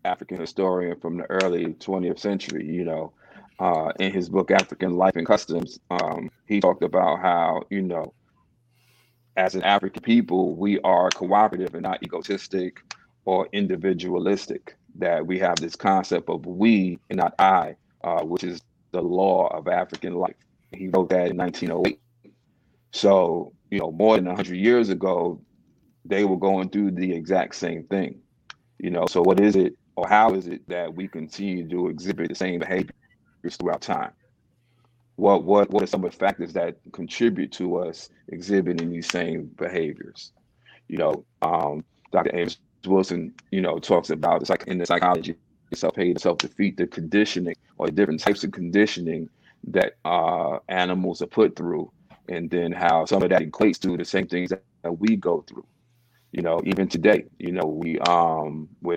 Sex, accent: male, American